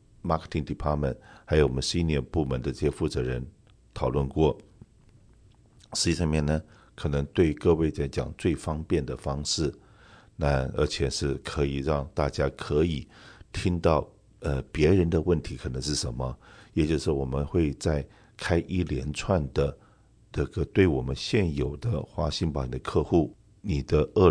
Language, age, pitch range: Chinese, 50-69, 70-90 Hz